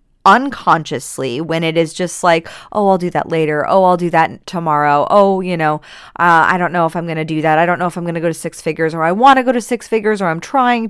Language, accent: English, American